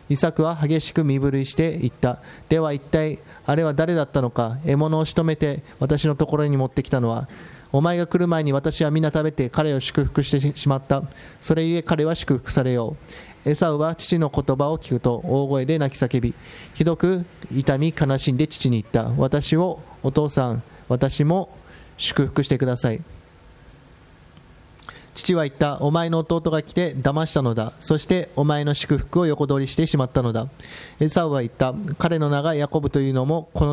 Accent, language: Japanese, English